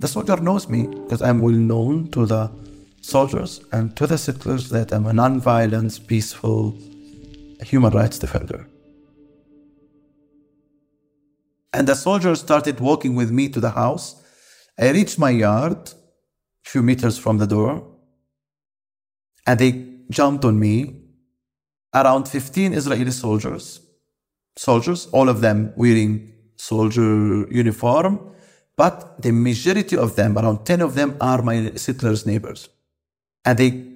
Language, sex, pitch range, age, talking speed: English, male, 110-140 Hz, 50-69, 130 wpm